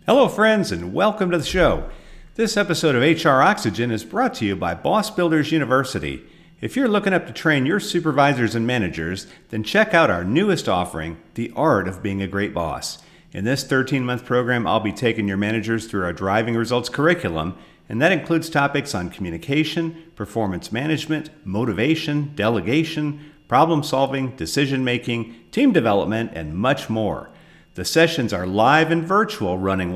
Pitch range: 105-160 Hz